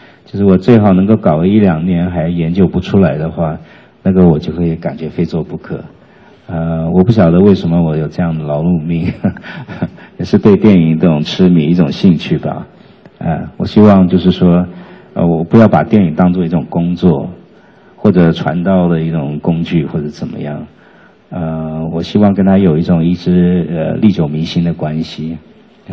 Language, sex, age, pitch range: Chinese, male, 50-69, 80-90 Hz